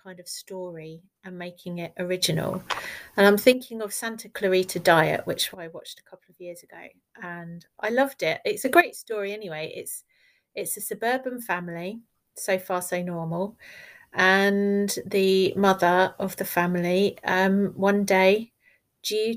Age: 30-49